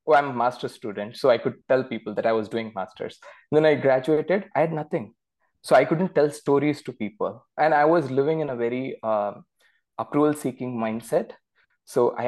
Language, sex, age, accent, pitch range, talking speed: English, male, 20-39, Indian, 115-150 Hz, 190 wpm